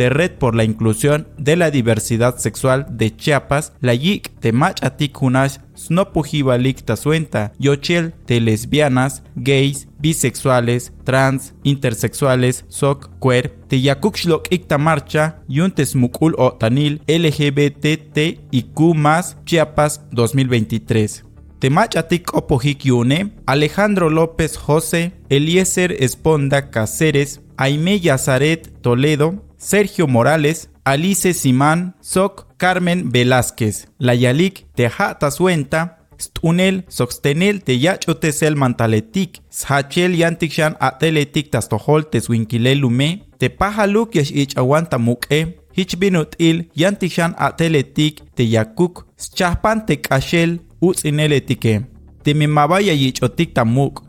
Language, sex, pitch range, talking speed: Spanish, male, 125-165 Hz, 100 wpm